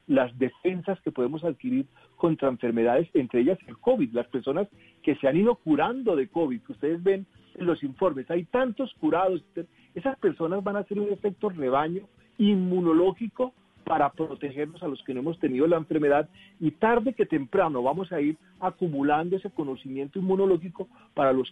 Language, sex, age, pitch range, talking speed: Spanish, male, 40-59, 135-180 Hz, 170 wpm